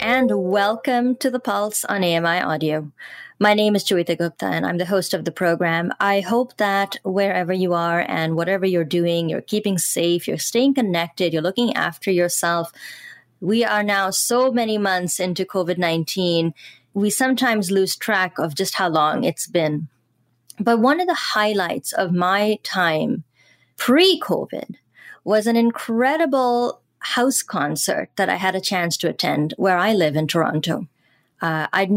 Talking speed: 160 wpm